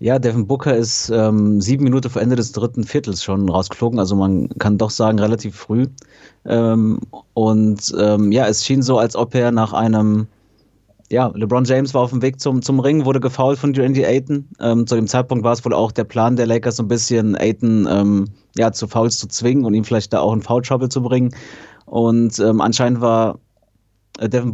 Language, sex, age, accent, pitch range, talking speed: German, male, 30-49, German, 105-125 Hz, 205 wpm